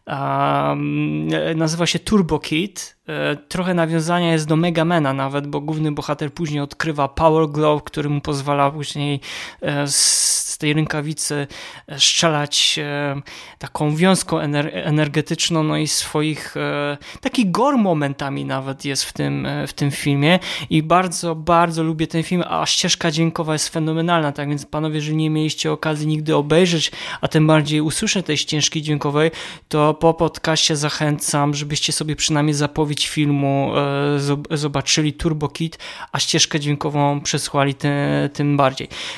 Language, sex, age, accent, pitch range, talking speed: Polish, male, 20-39, native, 145-165 Hz, 140 wpm